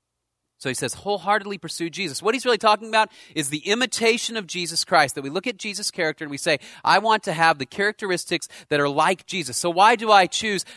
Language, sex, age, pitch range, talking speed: English, male, 30-49, 155-200 Hz, 230 wpm